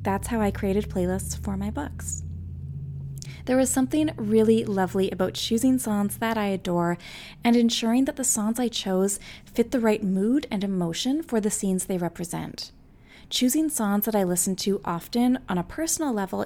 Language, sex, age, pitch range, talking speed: English, female, 20-39, 175-225 Hz, 175 wpm